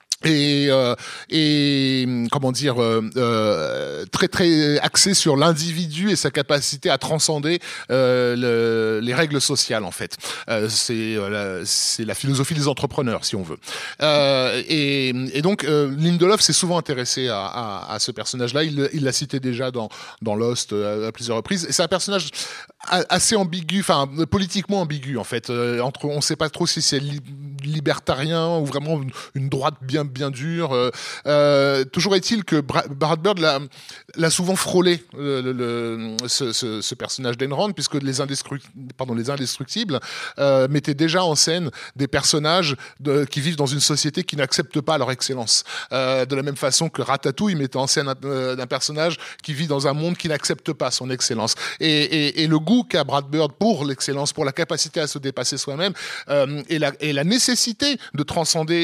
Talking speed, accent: 185 wpm, French